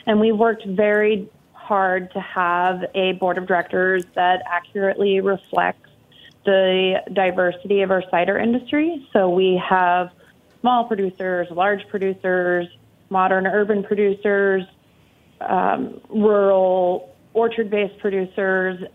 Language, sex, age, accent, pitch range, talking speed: English, female, 30-49, American, 180-205 Hz, 110 wpm